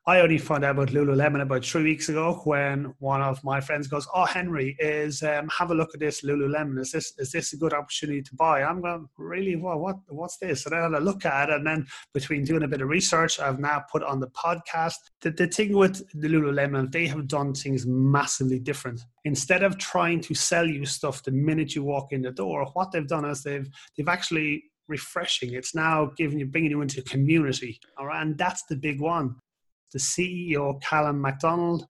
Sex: male